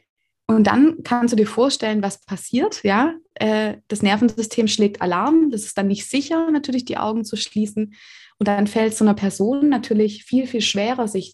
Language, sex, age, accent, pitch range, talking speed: German, female, 20-39, German, 195-245 Hz, 180 wpm